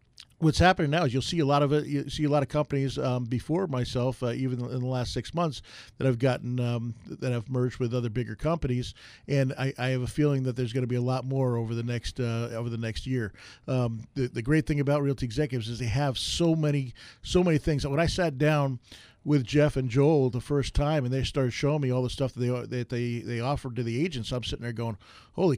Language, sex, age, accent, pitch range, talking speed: English, male, 40-59, American, 125-150 Hz, 255 wpm